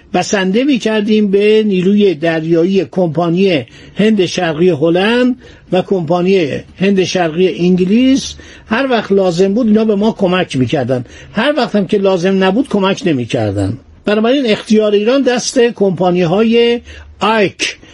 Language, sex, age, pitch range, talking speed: Persian, male, 60-79, 165-215 Hz, 125 wpm